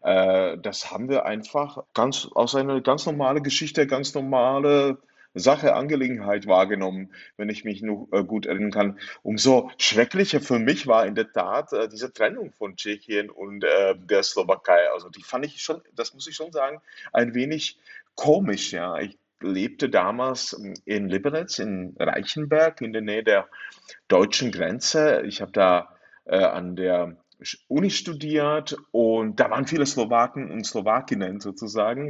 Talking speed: 150 wpm